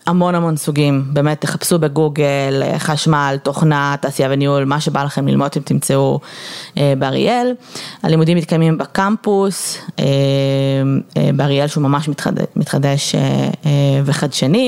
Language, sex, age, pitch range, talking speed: Hebrew, female, 20-39, 145-185 Hz, 100 wpm